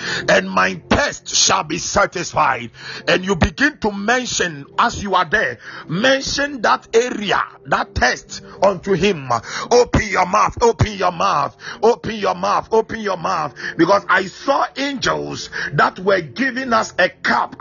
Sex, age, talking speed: male, 50-69, 150 wpm